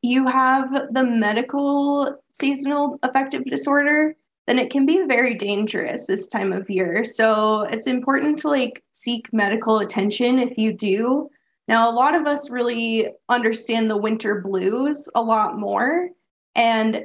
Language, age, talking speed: English, 10-29, 150 wpm